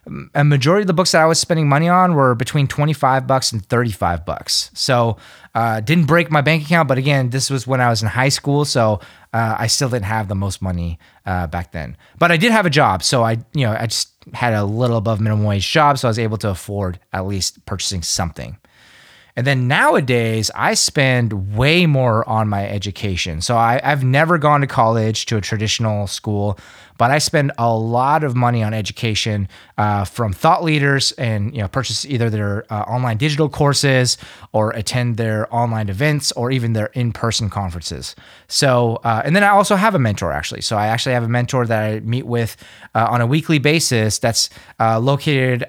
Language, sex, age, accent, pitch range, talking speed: English, male, 30-49, American, 105-135 Hz, 210 wpm